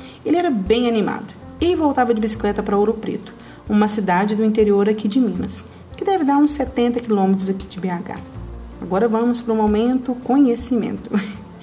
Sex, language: female, Portuguese